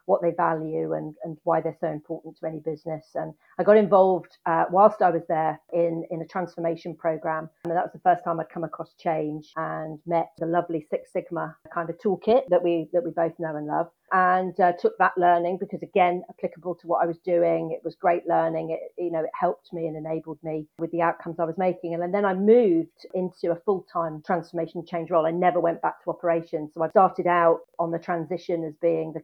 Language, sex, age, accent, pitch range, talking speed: English, female, 40-59, British, 165-180 Hz, 235 wpm